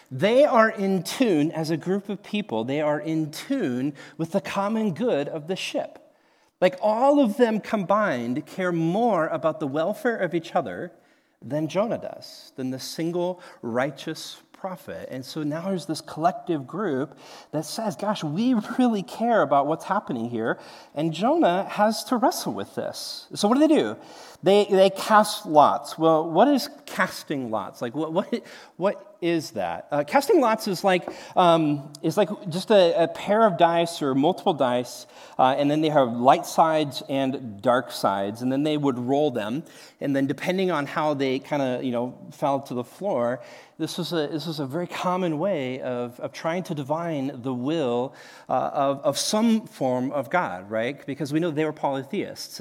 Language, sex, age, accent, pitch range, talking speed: English, male, 40-59, American, 145-205 Hz, 185 wpm